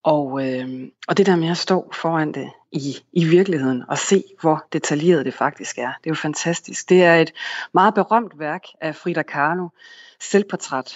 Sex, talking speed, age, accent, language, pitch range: female, 185 wpm, 30-49, native, Danish, 145-185 Hz